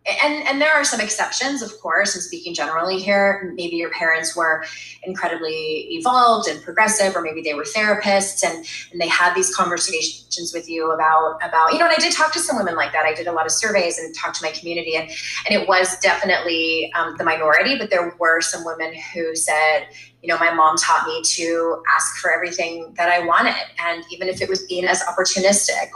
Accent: American